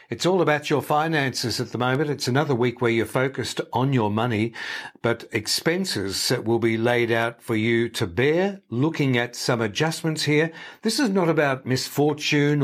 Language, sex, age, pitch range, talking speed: English, male, 60-79, 115-155 Hz, 180 wpm